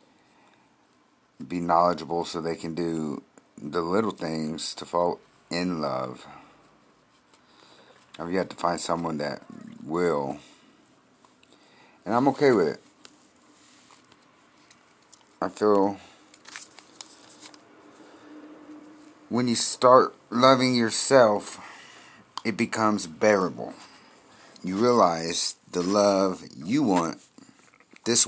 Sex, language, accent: male, English, American